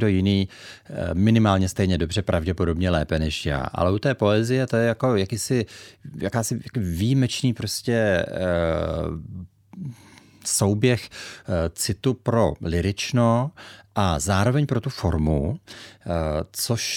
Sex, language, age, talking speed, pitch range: male, Czech, 40-59, 110 wpm, 85-110 Hz